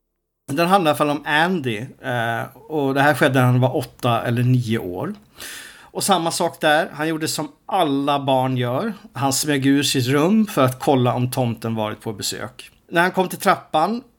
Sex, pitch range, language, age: male, 130-175 Hz, Swedish, 50-69